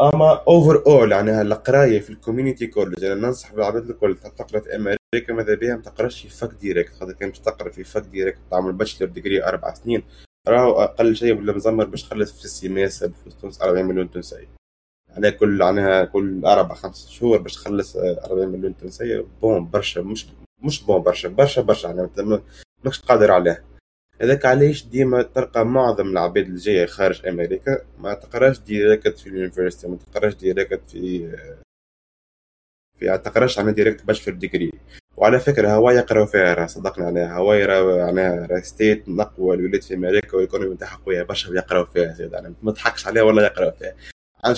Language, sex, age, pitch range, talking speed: Arabic, male, 20-39, 90-110 Hz, 165 wpm